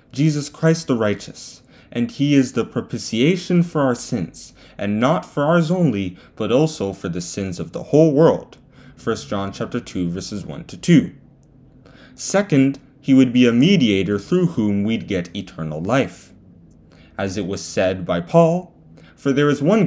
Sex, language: male, English